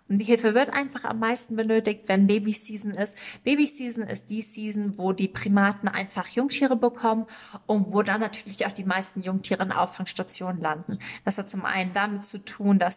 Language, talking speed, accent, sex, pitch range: German, 185 wpm, German, female, 185-220 Hz